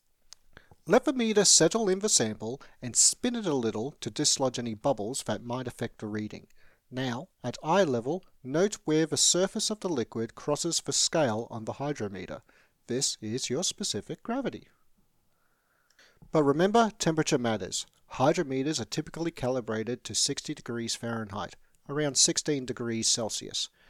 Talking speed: 150 wpm